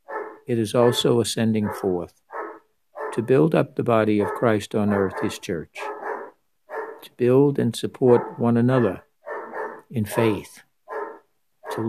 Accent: American